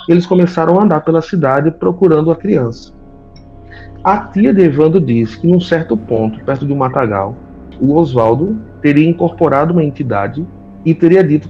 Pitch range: 120-165 Hz